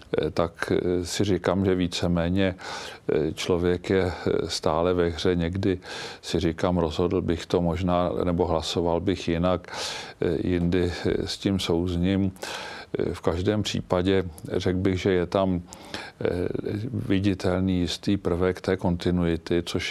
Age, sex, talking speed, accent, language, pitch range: 50-69, male, 120 wpm, native, Czech, 85-95 Hz